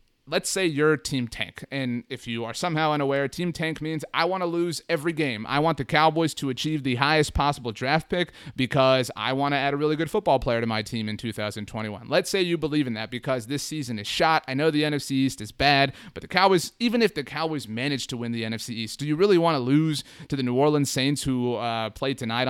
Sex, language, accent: male, English, American